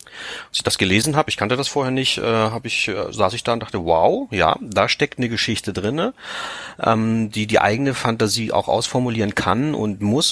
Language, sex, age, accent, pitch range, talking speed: German, male, 40-59, German, 95-115 Hz, 190 wpm